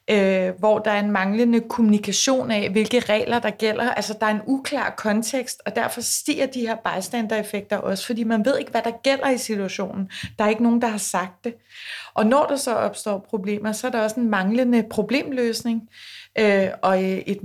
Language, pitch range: Danish, 195-230 Hz